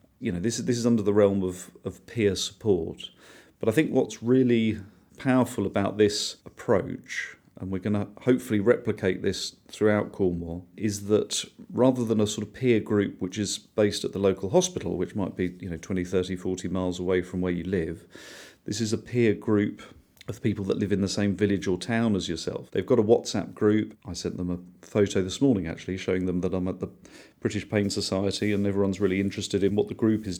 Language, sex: English, male